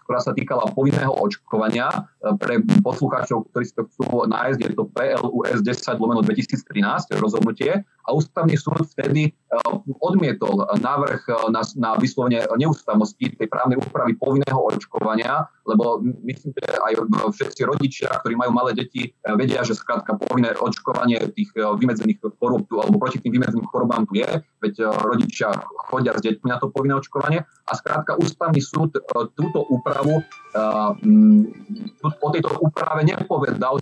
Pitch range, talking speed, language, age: 125-165 Hz, 135 wpm, Slovak, 30-49